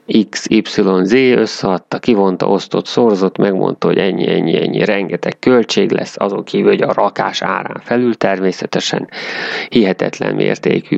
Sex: male